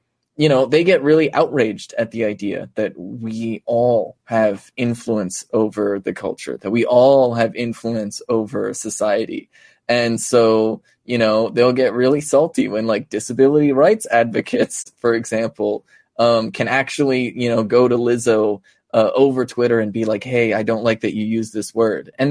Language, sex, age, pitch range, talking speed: English, male, 20-39, 110-125 Hz, 170 wpm